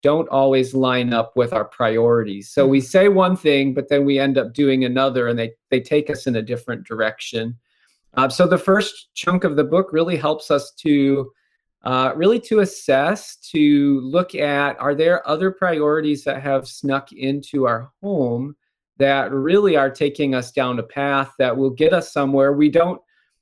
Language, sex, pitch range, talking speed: English, male, 130-160 Hz, 185 wpm